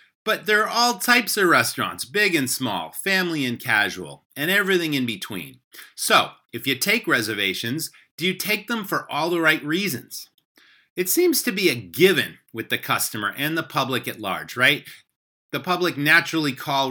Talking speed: 175 wpm